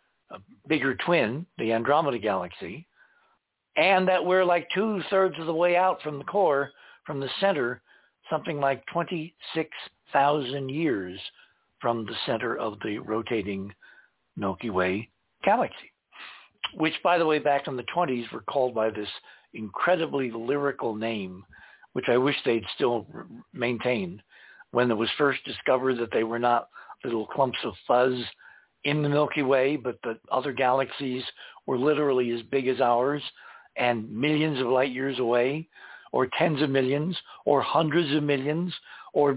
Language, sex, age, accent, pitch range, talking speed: English, male, 60-79, American, 115-150 Hz, 150 wpm